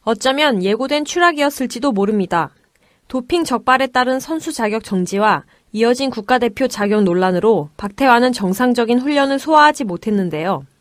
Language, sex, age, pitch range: Korean, female, 20-39, 200-260 Hz